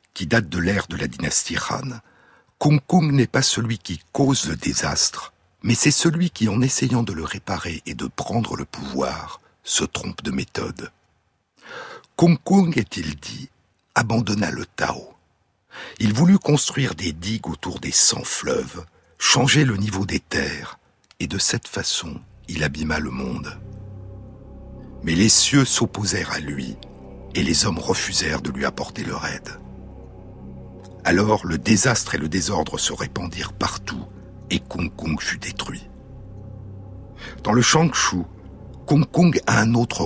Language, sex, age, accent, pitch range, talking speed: French, male, 60-79, French, 95-130 Hz, 150 wpm